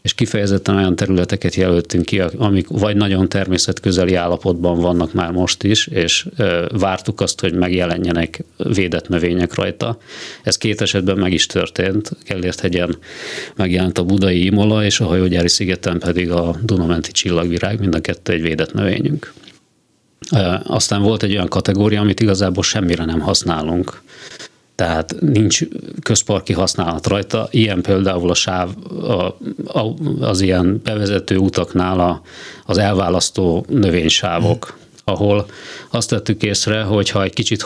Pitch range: 90-100 Hz